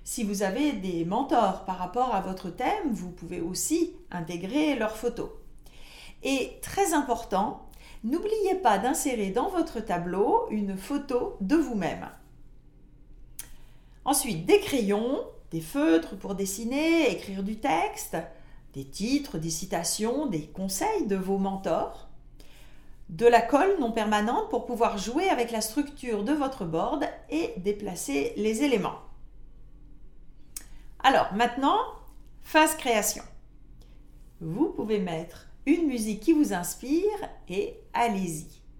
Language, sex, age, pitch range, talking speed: French, female, 40-59, 195-285 Hz, 125 wpm